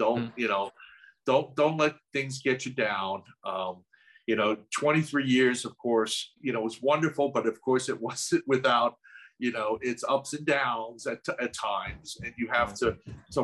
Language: English